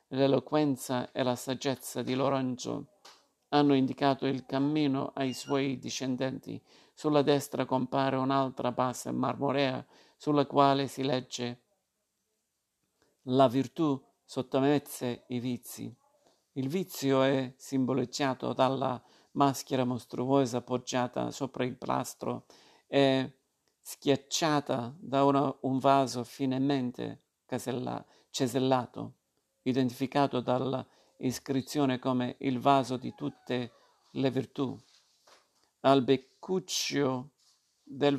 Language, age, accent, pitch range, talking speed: Italian, 50-69, native, 125-140 Hz, 95 wpm